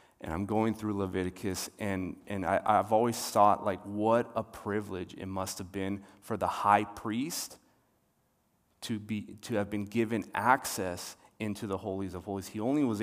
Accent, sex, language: American, male, English